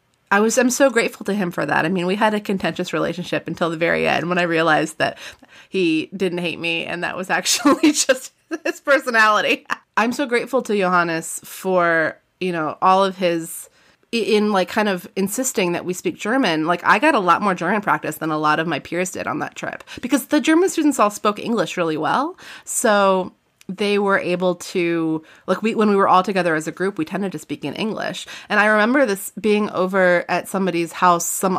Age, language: 30-49, English